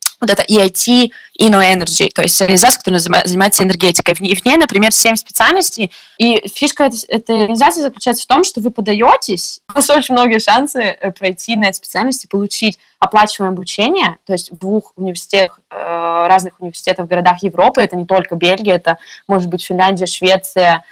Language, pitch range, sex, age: Russian, 185-225 Hz, female, 20-39